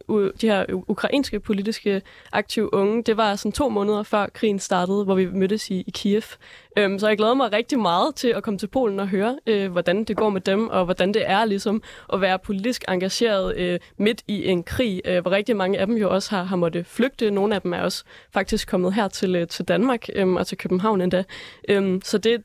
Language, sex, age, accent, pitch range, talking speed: Danish, female, 20-39, native, 190-225 Hz, 235 wpm